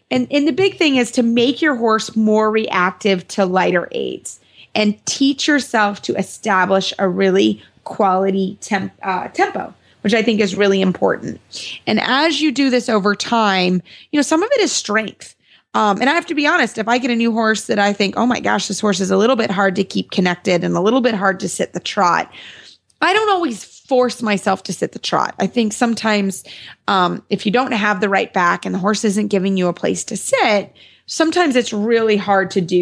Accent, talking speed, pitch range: American, 220 wpm, 195-235 Hz